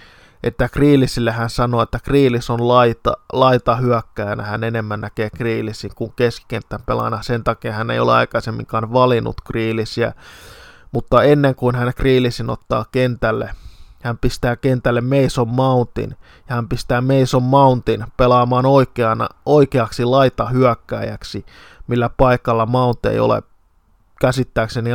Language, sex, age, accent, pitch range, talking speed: Finnish, male, 20-39, native, 115-125 Hz, 125 wpm